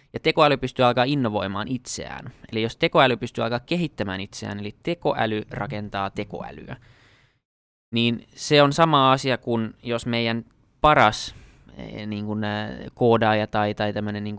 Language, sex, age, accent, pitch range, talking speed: Finnish, male, 20-39, native, 105-125 Hz, 140 wpm